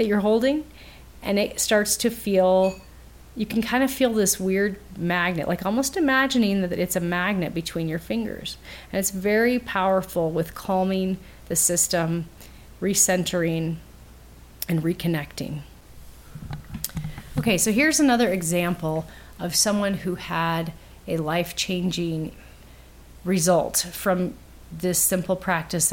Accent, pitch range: American, 170-215 Hz